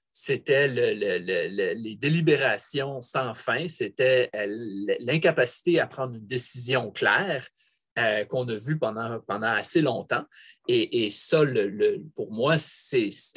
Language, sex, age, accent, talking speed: English, male, 30-49, Canadian, 115 wpm